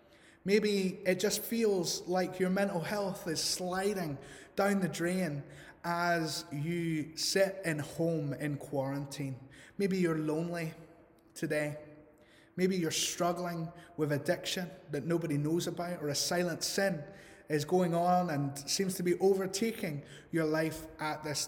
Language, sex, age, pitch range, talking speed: English, male, 20-39, 145-175 Hz, 135 wpm